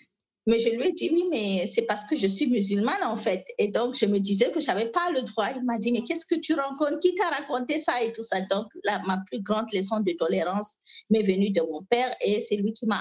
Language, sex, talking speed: French, female, 270 wpm